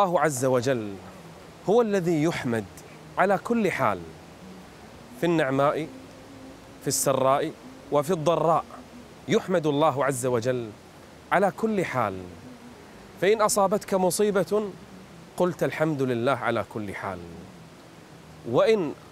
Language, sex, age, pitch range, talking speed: Arabic, male, 30-49, 120-195 Hz, 100 wpm